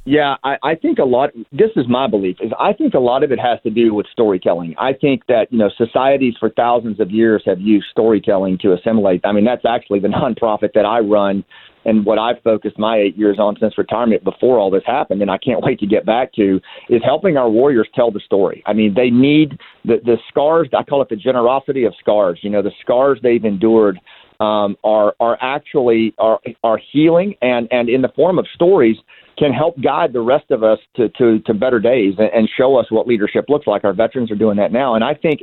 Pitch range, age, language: 105-130 Hz, 40-59, English